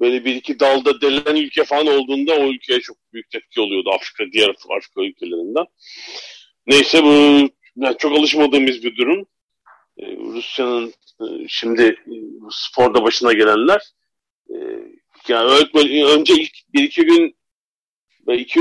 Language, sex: Turkish, male